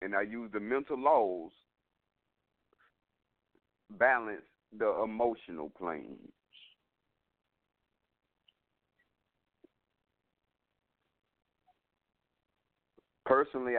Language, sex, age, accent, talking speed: English, male, 50-69, American, 50 wpm